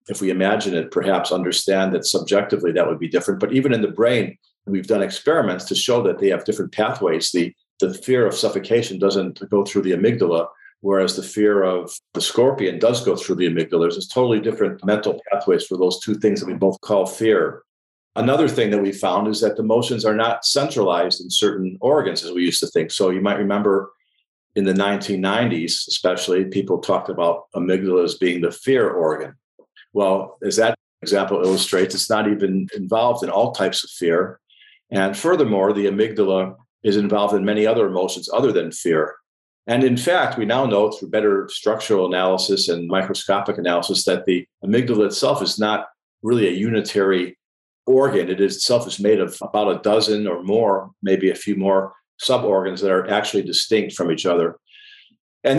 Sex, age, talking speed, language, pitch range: male, 50-69, 185 wpm, English, 95-110 Hz